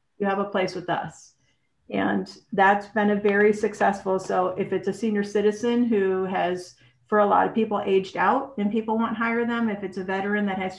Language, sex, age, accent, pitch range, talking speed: English, female, 50-69, American, 180-210 Hz, 210 wpm